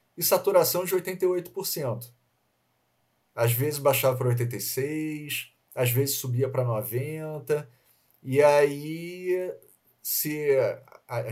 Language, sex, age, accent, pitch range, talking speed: Portuguese, male, 40-59, Brazilian, 125-160 Hz, 95 wpm